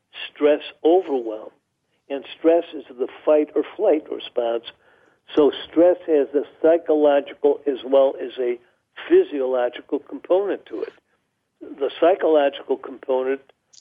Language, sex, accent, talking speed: English, male, American, 115 wpm